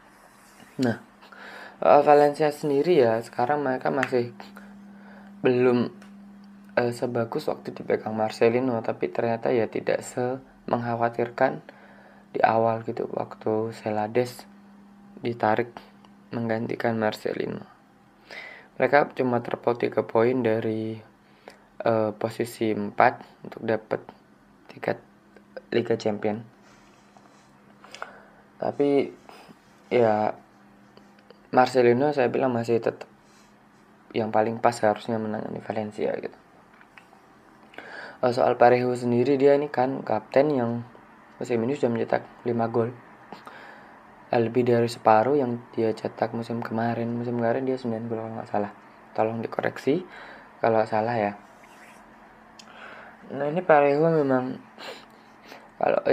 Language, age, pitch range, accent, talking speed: Indonesian, 20-39, 110-135 Hz, native, 100 wpm